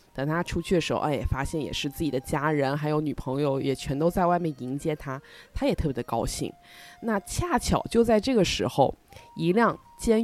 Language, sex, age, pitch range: Chinese, female, 20-39, 155-230 Hz